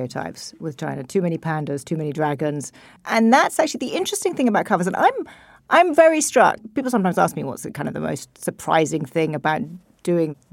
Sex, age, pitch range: female, 40-59, 180-240 Hz